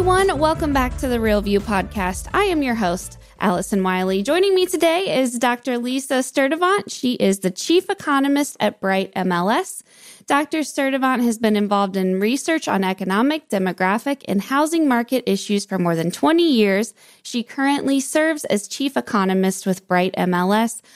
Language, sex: English, female